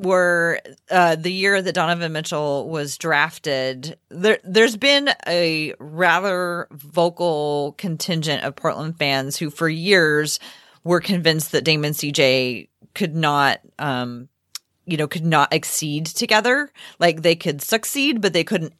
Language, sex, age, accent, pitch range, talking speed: English, female, 30-49, American, 145-180 Hz, 135 wpm